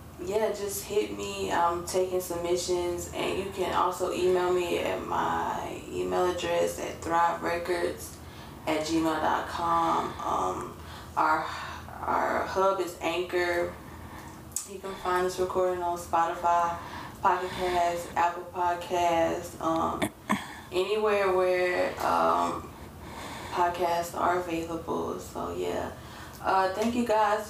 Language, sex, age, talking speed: English, female, 20-39, 110 wpm